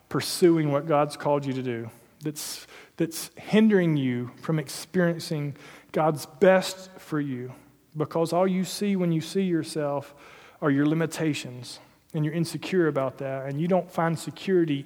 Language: English